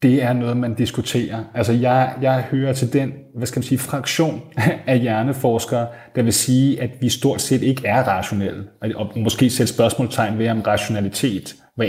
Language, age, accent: Danish, 30-49, native